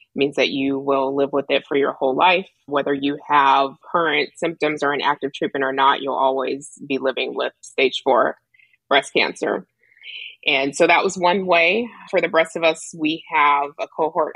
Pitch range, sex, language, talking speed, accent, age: 140-155 Hz, female, English, 190 wpm, American, 20-39